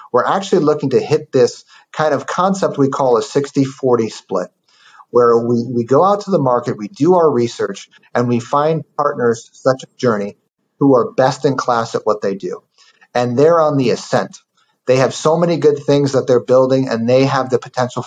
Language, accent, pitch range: English, American, 125-155 Hz